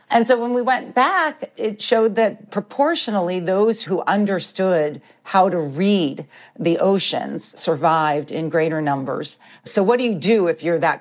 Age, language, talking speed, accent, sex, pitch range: 50-69, English, 165 wpm, American, female, 165-220 Hz